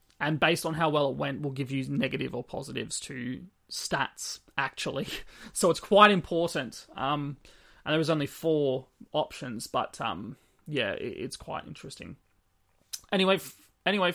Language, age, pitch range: English, 20-39, 135-155 Hz